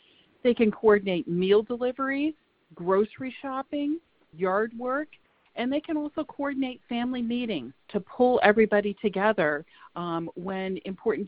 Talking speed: 120 wpm